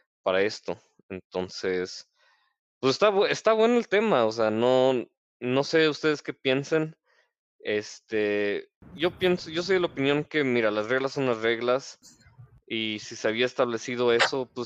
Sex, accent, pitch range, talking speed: male, Mexican, 110-135 Hz, 160 wpm